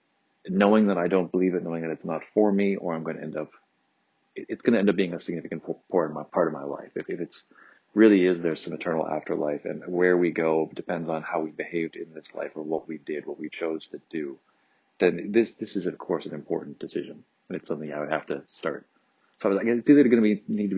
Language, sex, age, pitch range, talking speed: English, male, 30-49, 80-95 Hz, 250 wpm